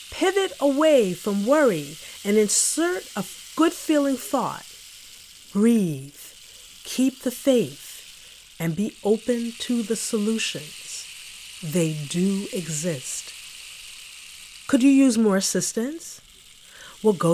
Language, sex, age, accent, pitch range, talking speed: English, female, 40-59, American, 175-230 Hz, 100 wpm